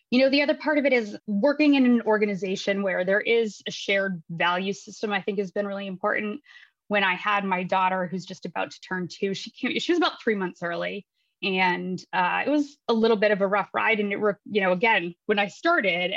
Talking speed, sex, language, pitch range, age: 235 wpm, female, English, 185-220 Hz, 20-39